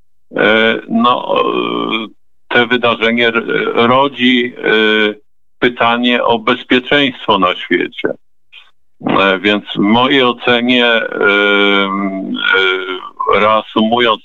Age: 50-69